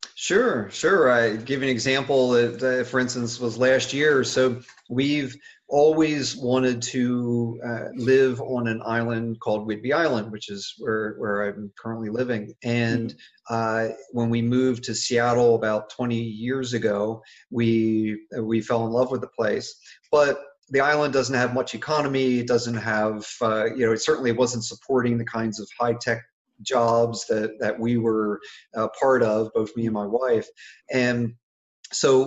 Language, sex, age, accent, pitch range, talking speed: English, male, 40-59, American, 115-135 Hz, 160 wpm